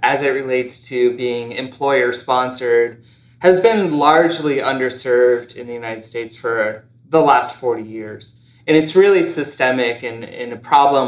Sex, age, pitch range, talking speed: male, 20-39, 120-145 Hz, 150 wpm